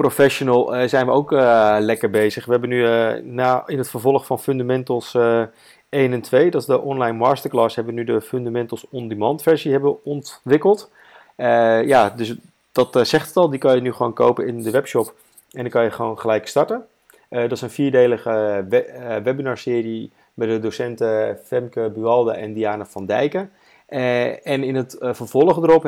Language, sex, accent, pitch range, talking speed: Dutch, male, Dutch, 115-140 Hz, 185 wpm